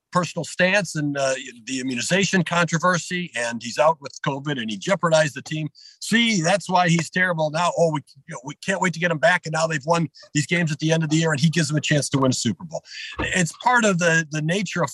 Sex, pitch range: male, 160-225 Hz